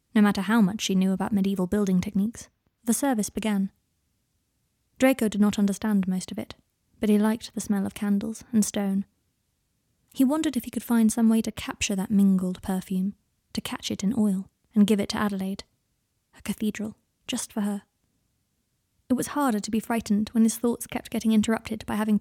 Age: 20-39